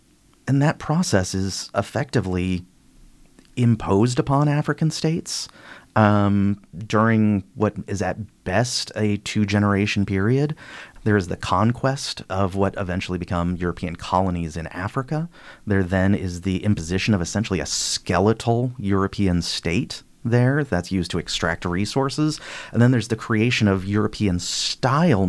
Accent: American